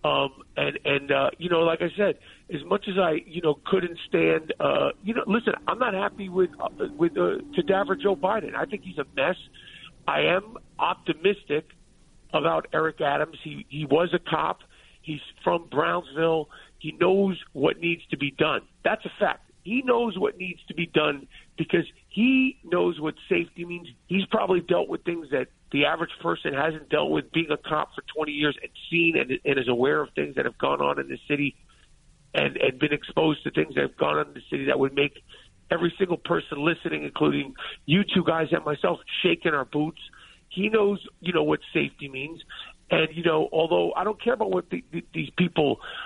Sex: male